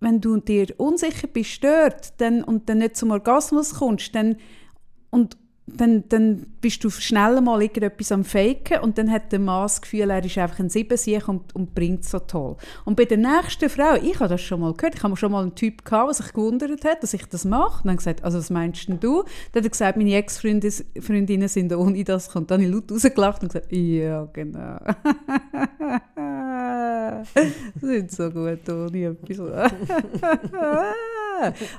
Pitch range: 200-275 Hz